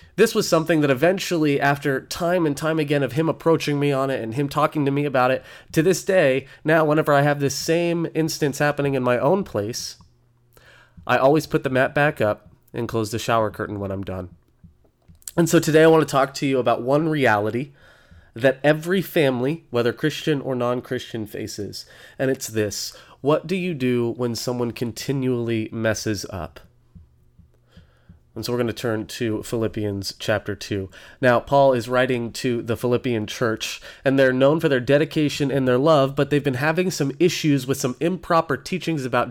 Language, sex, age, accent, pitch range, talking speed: English, male, 30-49, American, 115-150 Hz, 190 wpm